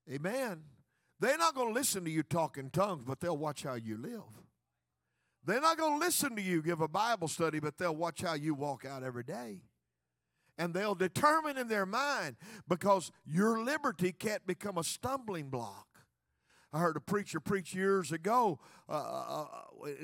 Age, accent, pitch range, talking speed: 50-69, American, 150-200 Hz, 175 wpm